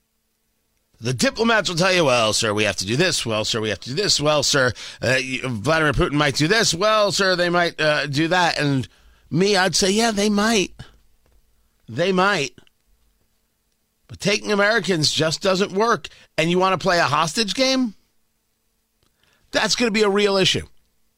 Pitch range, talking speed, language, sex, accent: 140-210 Hz, 180 wpm, English, male, American